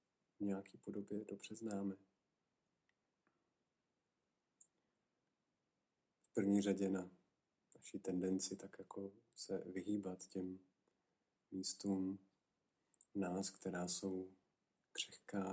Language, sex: Czech, male